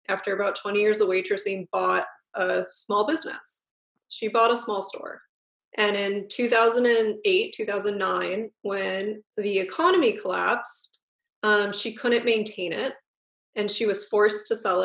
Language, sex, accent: English, female, American